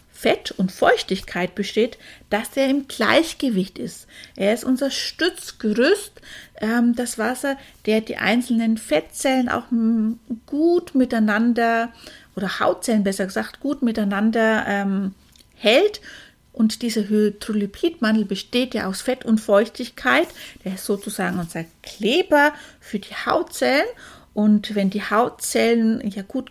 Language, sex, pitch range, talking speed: German, female, 210-270 Hz, 120 wpm